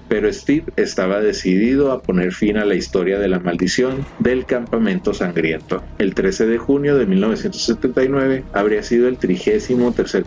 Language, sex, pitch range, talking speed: Spanish, male, 95-140 Hz, 160 wpm